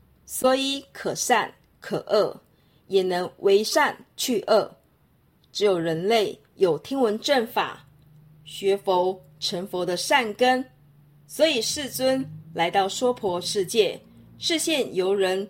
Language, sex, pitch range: Chinese, female, 180-255 Hz